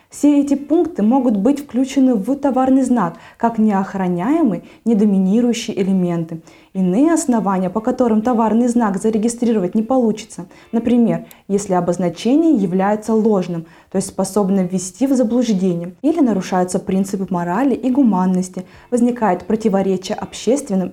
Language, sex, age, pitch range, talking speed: Russian, female, 20-39, 190-245 Hz, 120 wpm